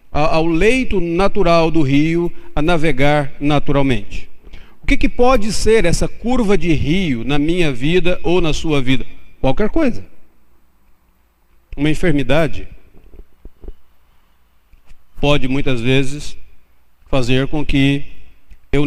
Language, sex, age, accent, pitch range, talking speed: Portuguese, male, 50-69, Brazilian, 115-150 Hz, 110 wpm